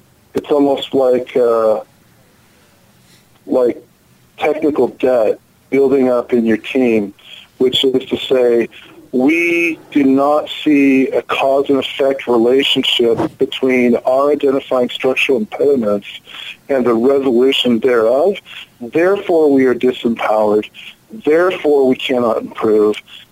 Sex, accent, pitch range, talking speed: male, American, 120-145 Hz, 110 wpm